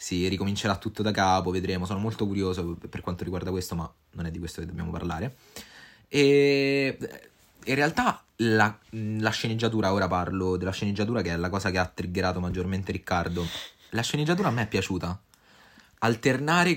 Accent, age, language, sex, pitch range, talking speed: native, 20-39, Italian, male, 90-110 Hz, 170 wpm